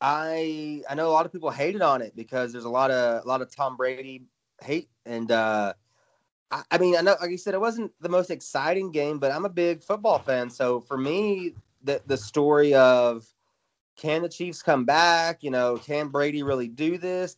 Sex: male